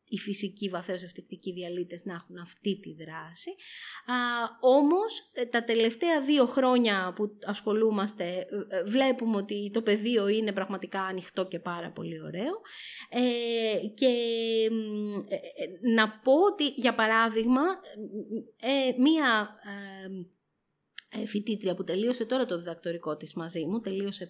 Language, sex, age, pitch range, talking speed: Greek, female, 30-49, 190-265 Hz, 125 wpm